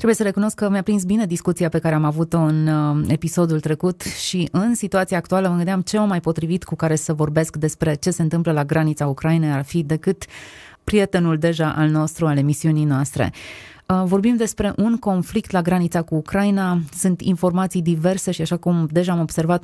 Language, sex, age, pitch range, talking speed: Romanian, female, 20-39, 160-190 Hz, 195 wpm